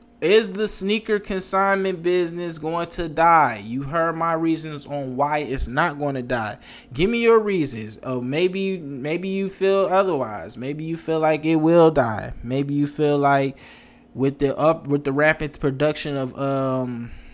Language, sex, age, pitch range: English, male, 20-39, 135-175 Hz